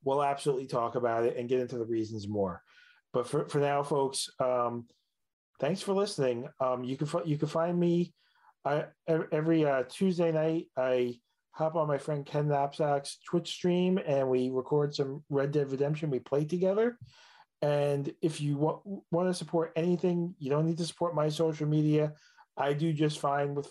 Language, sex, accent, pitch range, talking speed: English, male, American, 130-155 Hz, 180 wpm